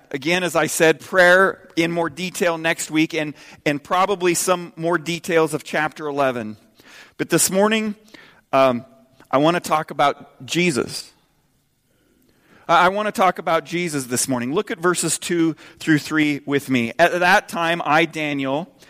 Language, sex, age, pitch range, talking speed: English, male, 40-59, 145-190 Hz, 160 wpm